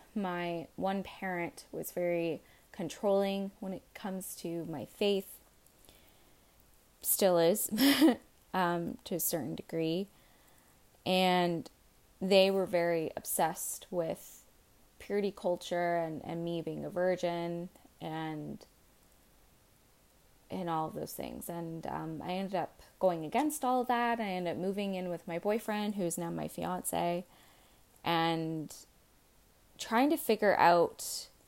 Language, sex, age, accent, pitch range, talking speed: English, female, 20-39, American, 170-200 Hz, 125 wpm